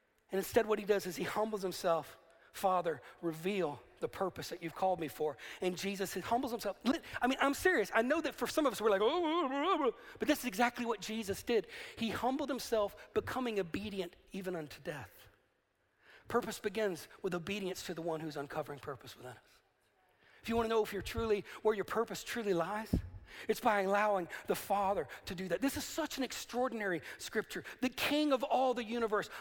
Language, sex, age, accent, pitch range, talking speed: English, male, 40-59, American, 180-240 Hz, 195 wpm